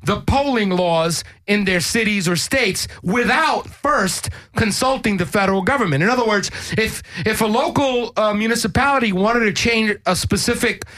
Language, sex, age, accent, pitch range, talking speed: English, male, 30-49, American, 180-235 Hz, 155 wpm